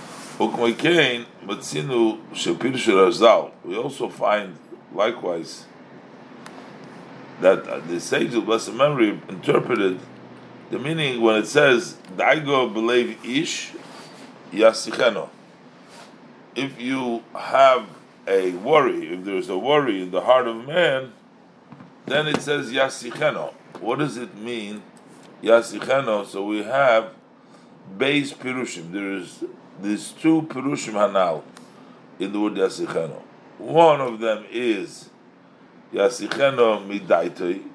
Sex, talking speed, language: male, 95 wpm, English